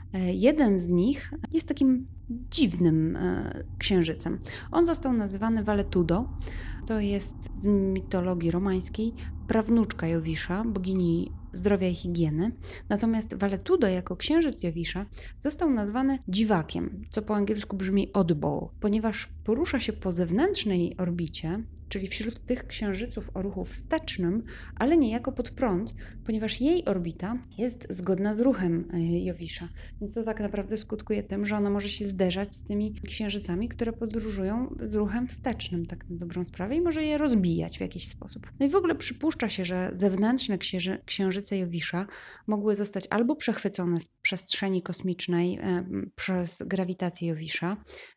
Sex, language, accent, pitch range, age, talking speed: female, Polish, native, 180-225 Hz, 20-39, 140 wpm